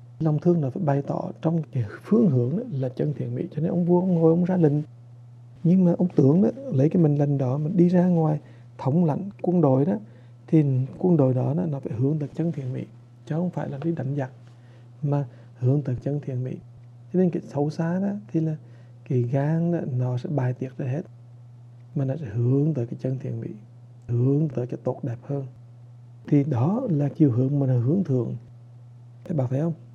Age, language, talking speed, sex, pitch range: 60-79, English, 220 wpm, male, 120-165 Hz